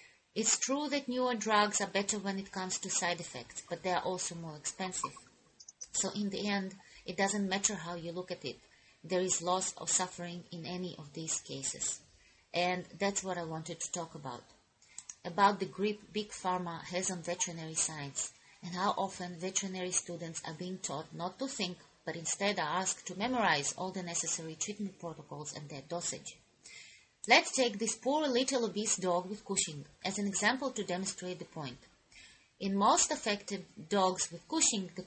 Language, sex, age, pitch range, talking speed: English, female, 30-49, 170-210 Hz, 180 wpm